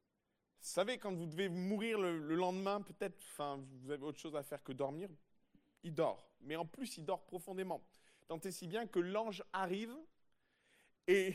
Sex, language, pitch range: male, French, 160-215 Hz